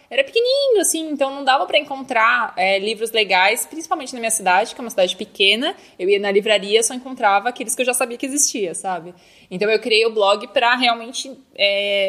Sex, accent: female, Brazilian